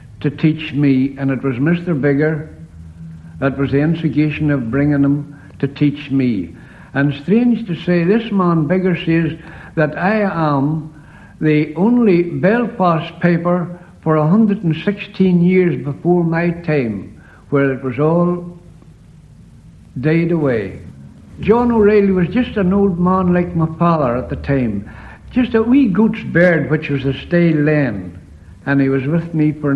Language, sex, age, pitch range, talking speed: English, male, 60-79, 140-190 Hz, 150 wpm